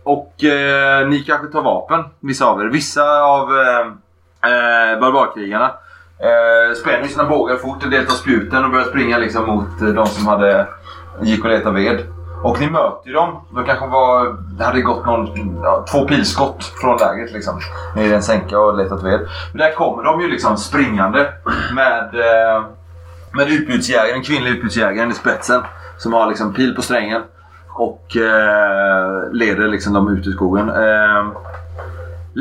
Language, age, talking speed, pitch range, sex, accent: Swedish, 30-49, 165 wpm, 95-130 Hz, male, native